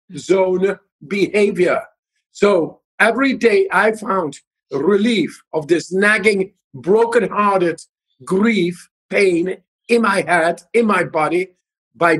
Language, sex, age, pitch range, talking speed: English, male, 50-69, 180-230 Hz, 105 wpm